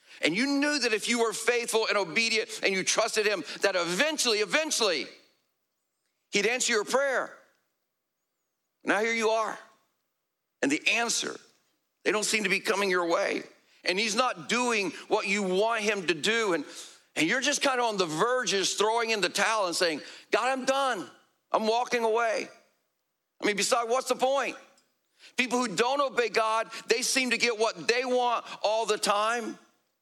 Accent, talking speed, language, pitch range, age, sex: American, 175 wpm, English, 210-245 Hz, 50-69, male